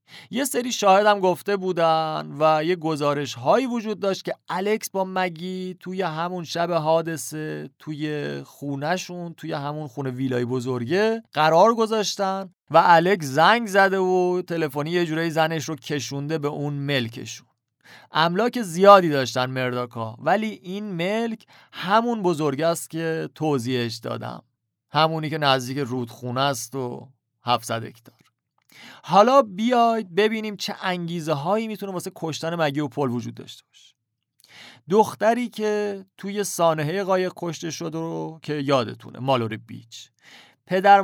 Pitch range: 135-185 Hz